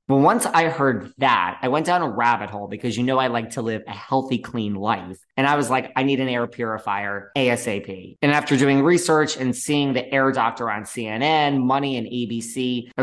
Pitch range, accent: 110-140 Hz, American